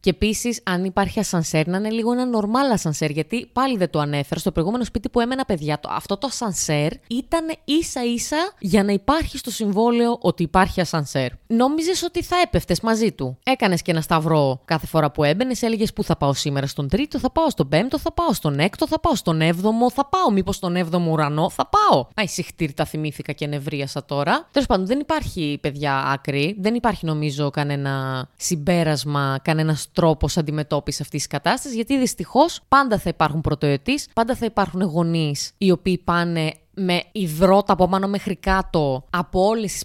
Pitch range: 155-220 Hz